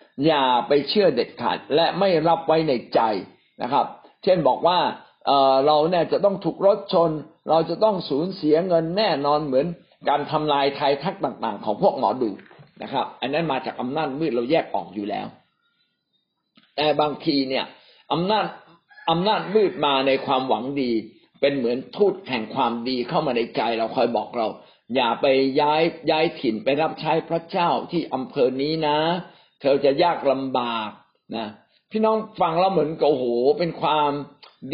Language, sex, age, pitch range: Thai, male, 60-79, 135-180 Hz